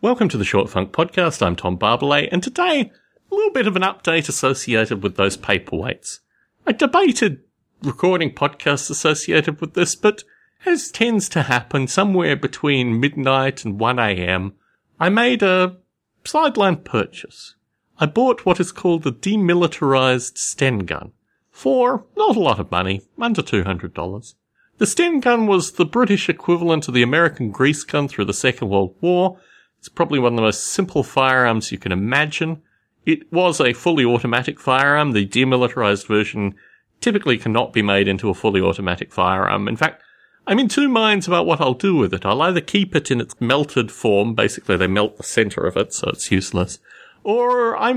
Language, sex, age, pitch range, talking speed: English, male, 40-59, 110-180 Hz, 175 wpm